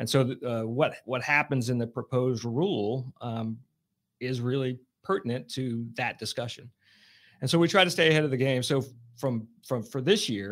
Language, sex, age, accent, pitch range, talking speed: English, male, 40-59, American, 115-135 Hz, 190 wpm